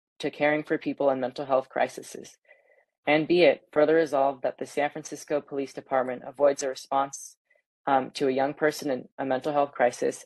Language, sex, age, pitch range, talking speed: English, female, 20-39, 130-150 Hz, 185 wpm